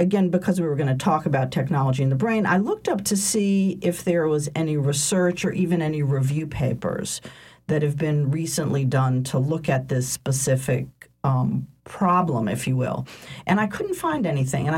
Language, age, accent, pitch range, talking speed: English, 50-69, American, 140-185 Hz, 195 wpm